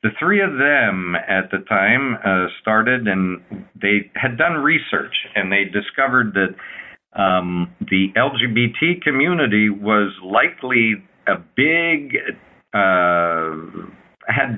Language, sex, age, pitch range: English, male, 50-69, 100-125 Hz